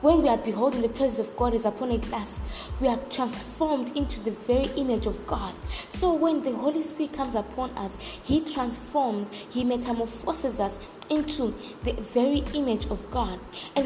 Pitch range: 225-285 Hz